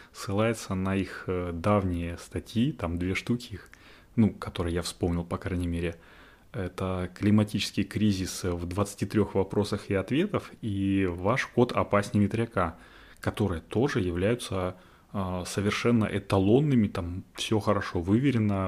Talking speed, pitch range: 120 wpm, 90-110 Hz